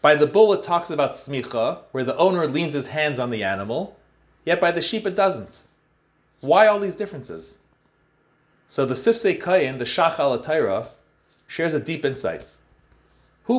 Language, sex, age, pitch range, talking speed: English, male, 30-49, 145-215 Hz, 170 wpm